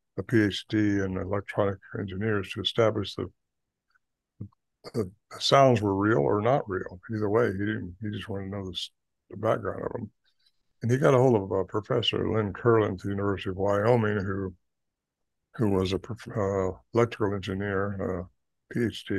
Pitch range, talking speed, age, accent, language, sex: 95-110 Hz, 165 wpm, 60-79, American, English, male